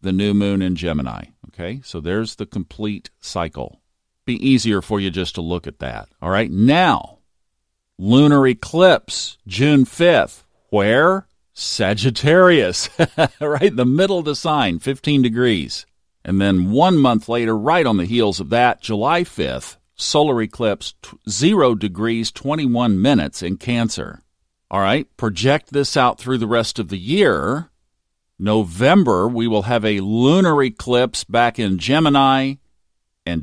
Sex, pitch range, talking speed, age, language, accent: male, 95-130 Hz, 145 wpm, 50-69, English, American